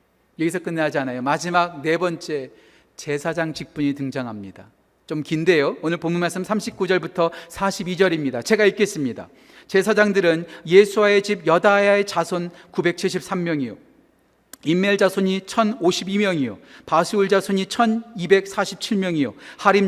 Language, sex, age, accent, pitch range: Korean, male, 40-59, native, 180-230 Hz